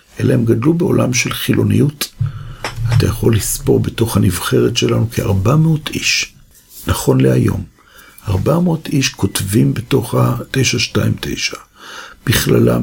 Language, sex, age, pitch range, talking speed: Hebrew, male, 60-79, 110-140 Hz, 105 wpm